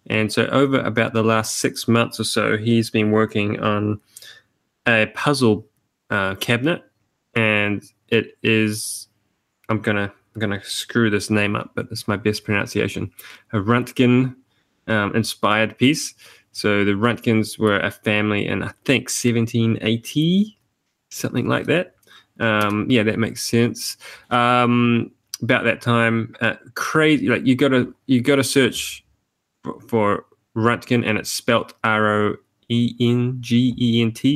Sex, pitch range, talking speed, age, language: male, 105-125 Hz, 130 wpm, 20-39, English